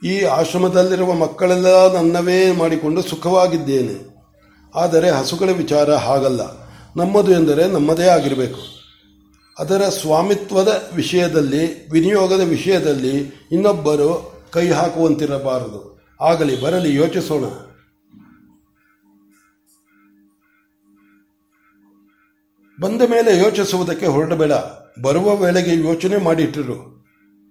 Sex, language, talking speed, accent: male, Kannada, 70 wpm, native